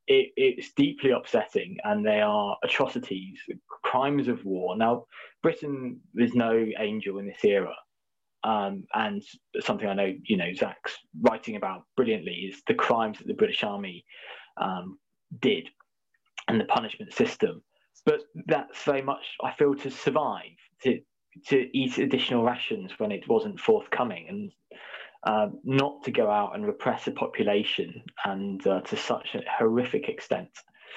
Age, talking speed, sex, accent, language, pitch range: 20-39, 145 wpm, male, British, English, 115-195 Hz